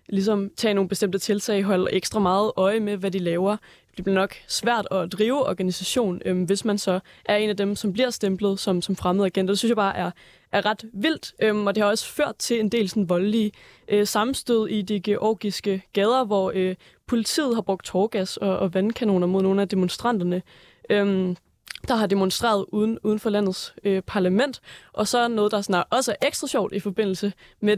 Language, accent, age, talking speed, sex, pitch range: Danish, native, 20-39, 205 wpm, female, 195-220 Hz